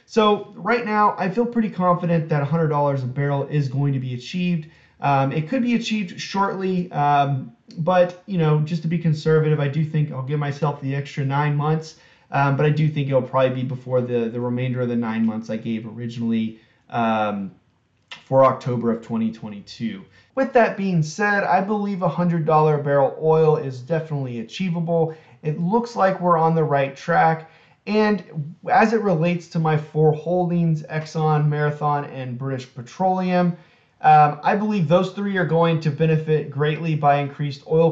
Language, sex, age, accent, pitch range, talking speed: English, male, 30-49, American, 140-175 Hz, 175 wpm